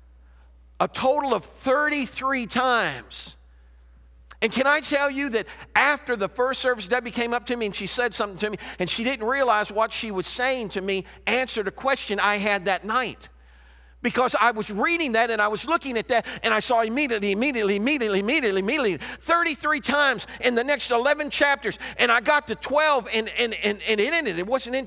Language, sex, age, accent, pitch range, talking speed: English, male, 50-69, American, 150-245 Hz, 200 wpm